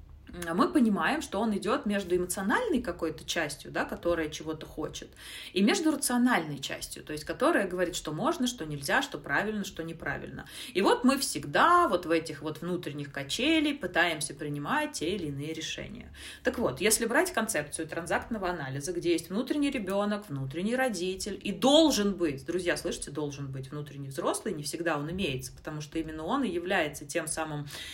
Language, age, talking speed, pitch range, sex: Russian, 30-49, 170 wpm, 160-225 Hz, female